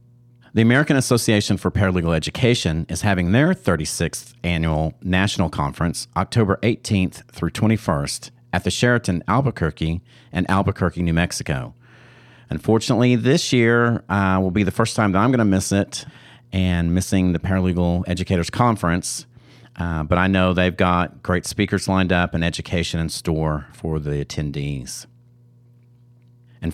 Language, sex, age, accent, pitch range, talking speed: English, male, 40-59, American, 85-115 Hz, 145 wpm